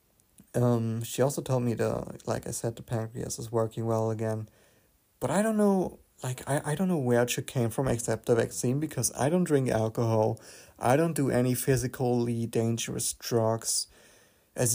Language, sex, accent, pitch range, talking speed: English, male, German, 110-130 Hz, 180 wpm